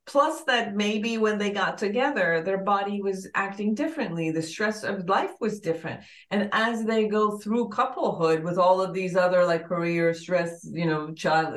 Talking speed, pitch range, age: 180 wpm, 170-210 Hz, 40-59